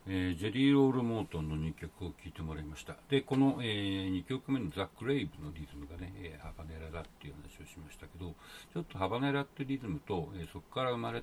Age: 60-79